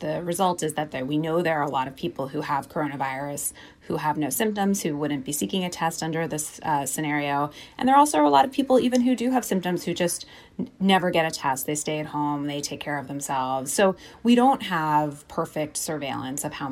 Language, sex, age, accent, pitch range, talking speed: English, female, 30-49, American, 145-175 Hz, 235 wpm